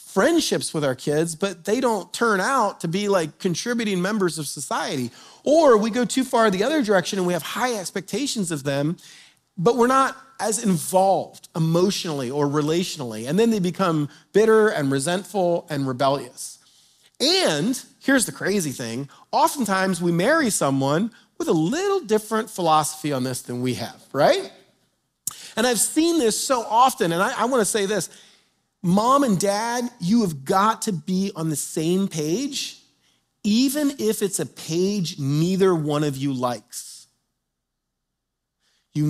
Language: English